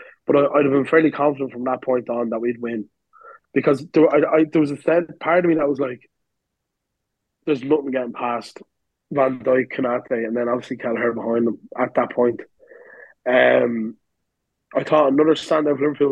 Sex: male